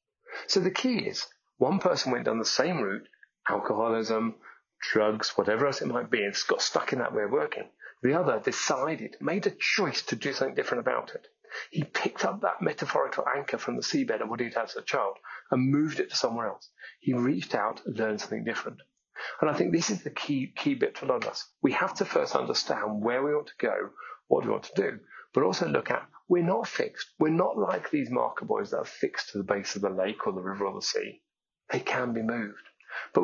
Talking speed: 235 wpm